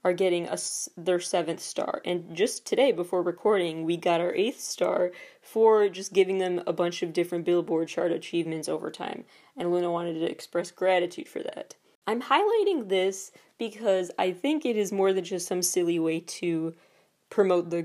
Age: 20-39